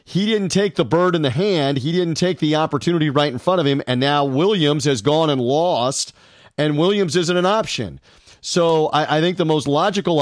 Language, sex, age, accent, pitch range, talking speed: English, male, 40-59, American, 140-175 Hz, 215 wpm